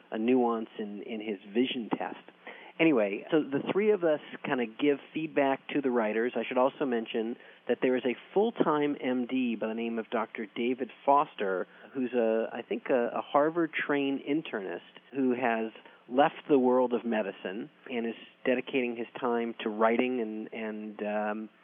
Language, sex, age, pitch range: English, male, 40-59, 110-130 Hz